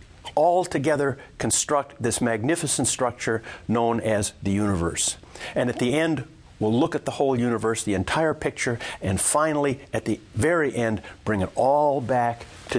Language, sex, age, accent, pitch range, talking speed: English, male, 50-69, American, 105-145 Hz, 160 wpm